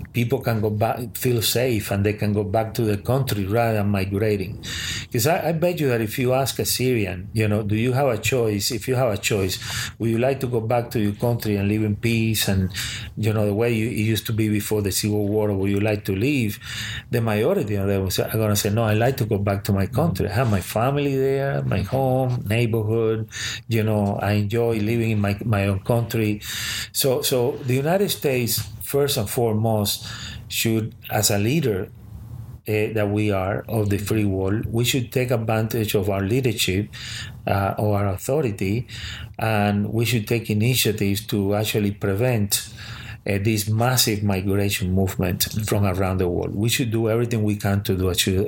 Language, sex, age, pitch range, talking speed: English, male, 40-59, 105-120 Hz, 205 wpm